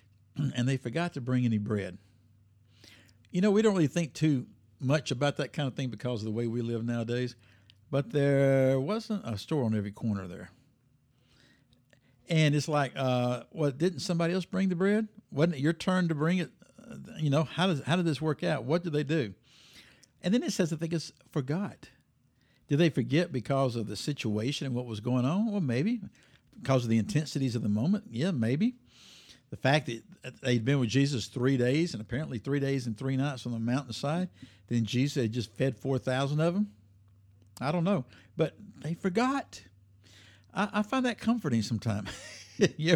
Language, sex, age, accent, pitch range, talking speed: English, male, 60-79, American, 110-160 Hz, 195 wpm